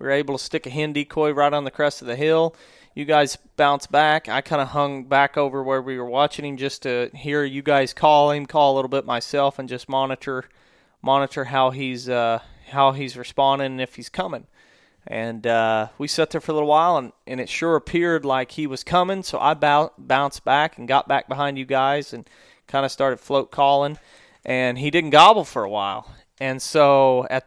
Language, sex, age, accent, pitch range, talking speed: English, male, 30-49, American, 130-150 Hz, 220 wpm